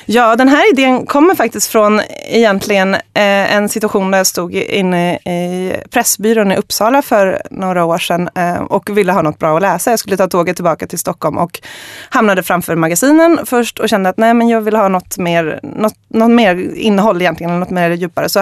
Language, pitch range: Swedish, 180-225 Hz